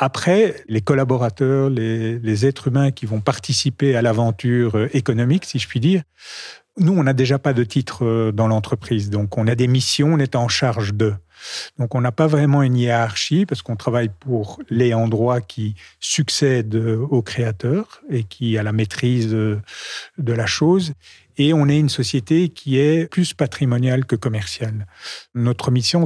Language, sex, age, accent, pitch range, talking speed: French, male, 50-69, French, 115-145 Hz, 170 wpm